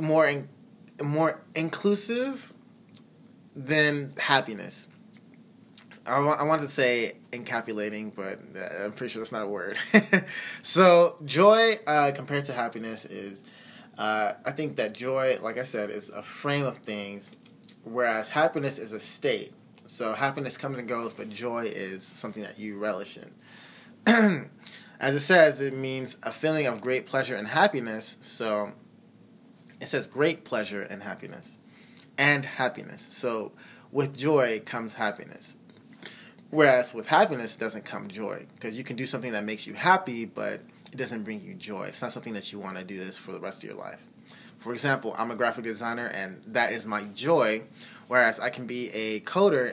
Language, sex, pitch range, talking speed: English, male, 110-155 Hz, 165 wpm